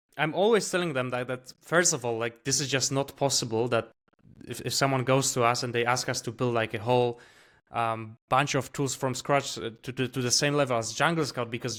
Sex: male